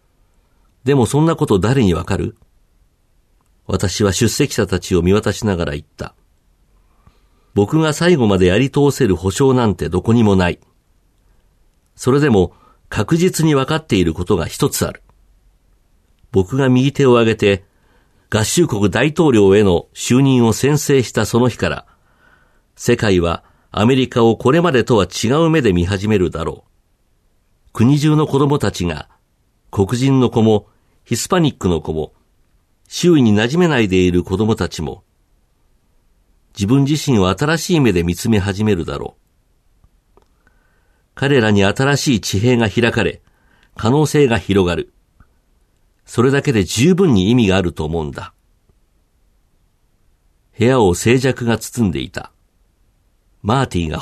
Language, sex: Japanese, male